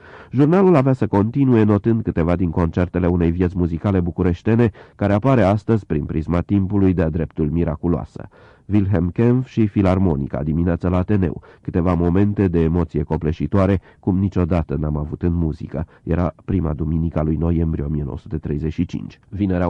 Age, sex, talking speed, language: 30-49, male, 140 wpm, Romanian